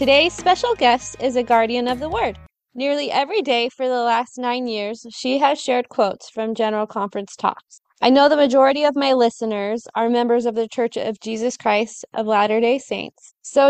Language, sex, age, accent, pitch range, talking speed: English, female, 20-39, American, 220-260 Hz, 195 wpm